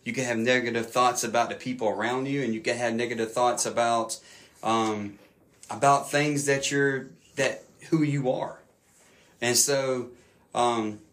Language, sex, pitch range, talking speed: English, male, 120-145 Hz, 155 wpm